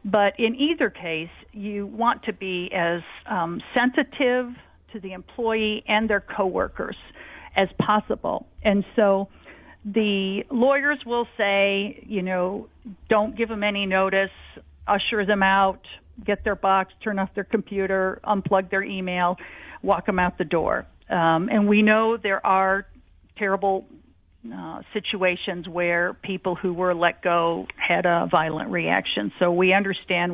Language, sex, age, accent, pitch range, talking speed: English, female, 50-69, American, 185-215 Hz, 140 wpm